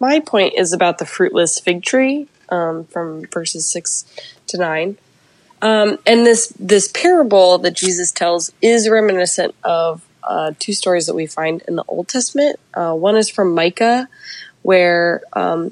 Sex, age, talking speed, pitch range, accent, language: female, 20-39, 160 wpm, 170-205 Hz, American, English